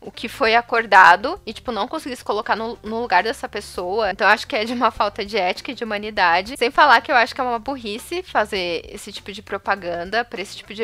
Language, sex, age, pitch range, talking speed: Portuguese, female, 10-29, 210-290 Hz, 245 wpm